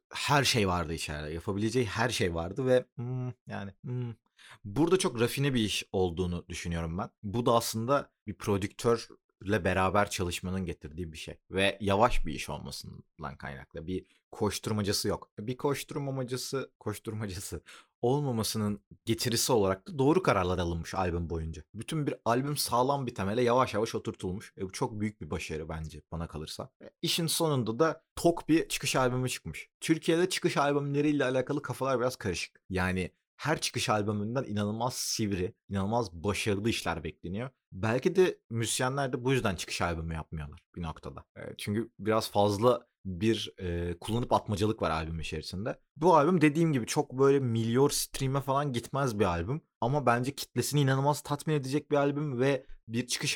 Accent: native